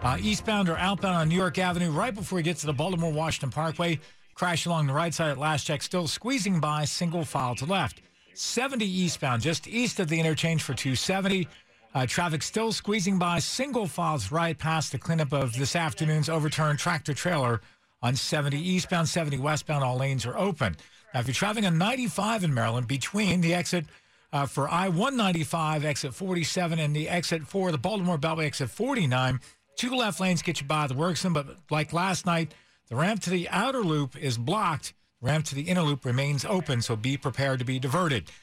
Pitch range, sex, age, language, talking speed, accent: 140-180 Hz, male, 50-69, English, 195 wpm, American